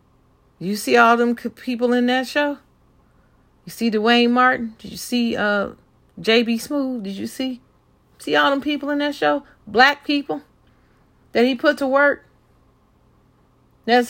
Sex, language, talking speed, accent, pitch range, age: female, English, 155 wpm, American, 175-235 Hz, 40-59